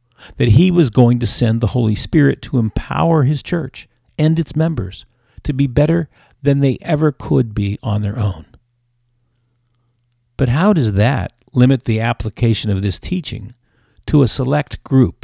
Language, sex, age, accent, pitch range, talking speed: English, male, 50-69, American, 105-135 Hz, 160 wpm